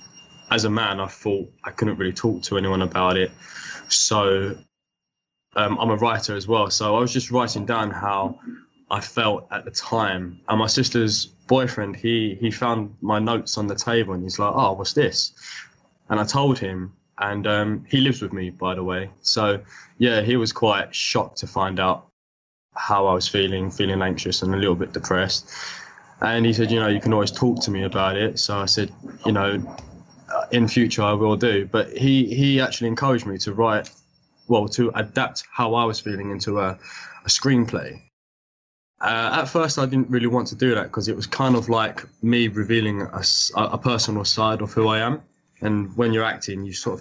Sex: male